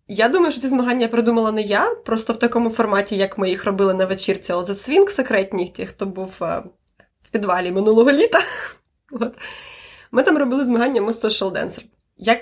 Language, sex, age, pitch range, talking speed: Ukrainian, female, 20-39, 200-255 Hz, 185 wpm